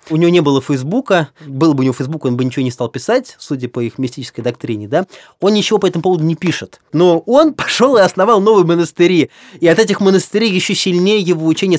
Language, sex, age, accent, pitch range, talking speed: Russian, male, 20-39, native, 140-180 Hz, 225 wpm